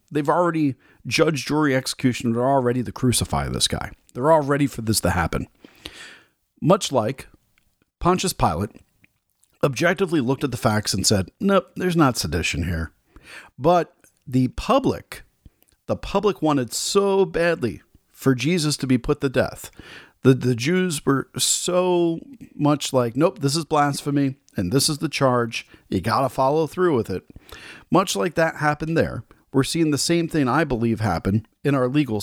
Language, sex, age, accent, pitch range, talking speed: English, male, 40-59, American, 120-160 Hz, 165 wpm